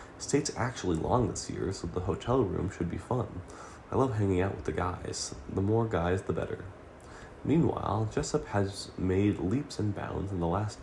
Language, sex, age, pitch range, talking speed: English, male, 20-39, 90-120 Hz, 190 wpm